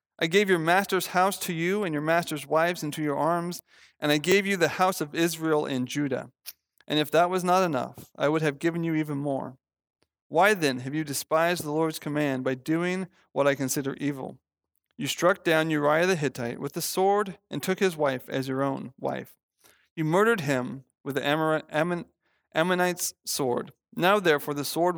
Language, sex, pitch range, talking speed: English, male, 140-175 Hz, 190 wpm